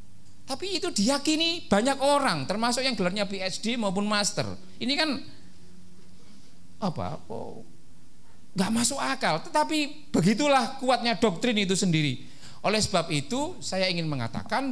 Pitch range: 130-205 Hz